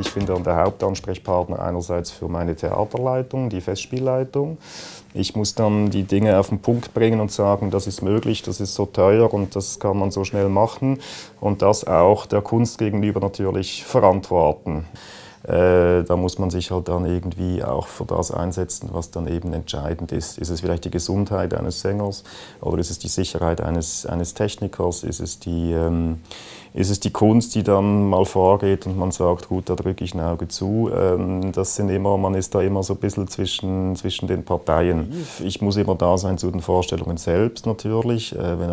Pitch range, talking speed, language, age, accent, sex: 90-100 Hz, 190 wpm, German, 30-49, German, male